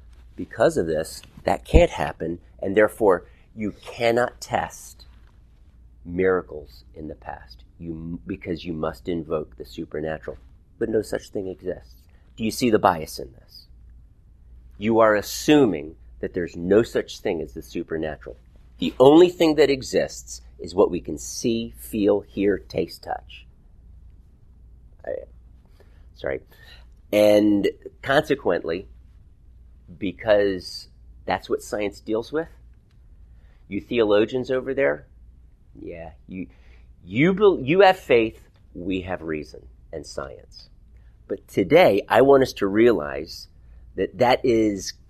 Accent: American